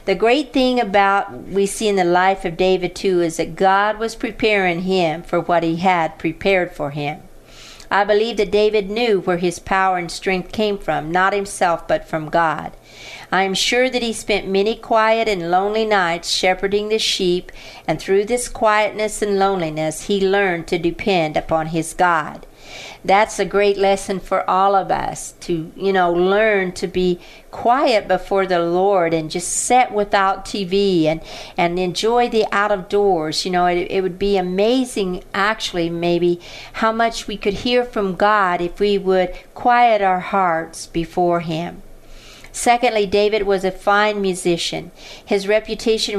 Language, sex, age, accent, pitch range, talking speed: English, female, 50-69, American, 180-210 Hz, 170 wpm